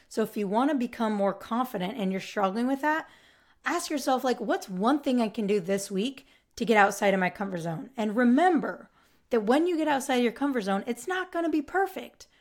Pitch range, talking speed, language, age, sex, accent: 195-245 Hz, 230 wpm, English, 30-49, female, American